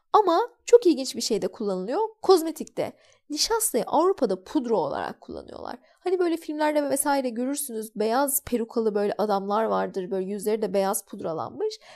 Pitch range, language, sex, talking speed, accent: 235-335 Hz, Turkish, female, 140 wpm, native